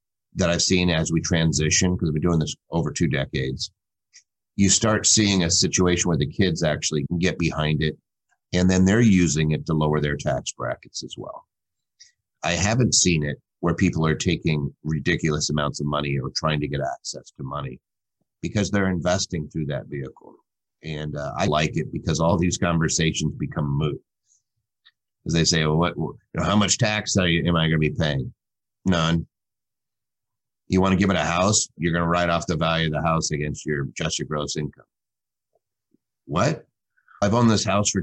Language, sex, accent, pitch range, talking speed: English, male, American, 75-95 Hz, 185 wpm